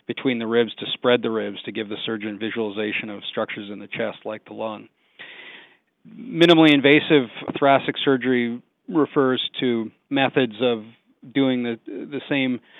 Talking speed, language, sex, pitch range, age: 150 wpm, English, male, 115-135 Hz, 40-59